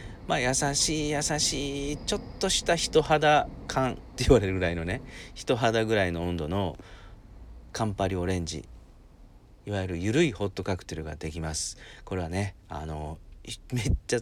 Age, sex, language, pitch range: 40-59, male, Japanese, 85-105 Hz